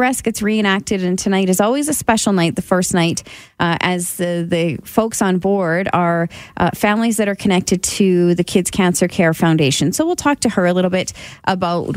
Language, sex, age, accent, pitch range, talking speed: English, female, 30-49, American, 175-225 Hz, 205 wpm